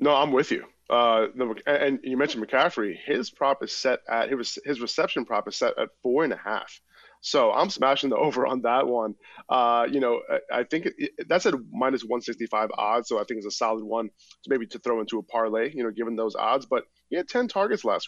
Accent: American